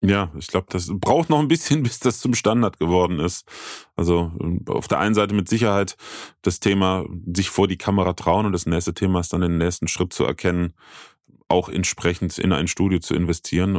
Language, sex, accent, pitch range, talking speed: German, male, German, 85-105 Hz, 200 wpm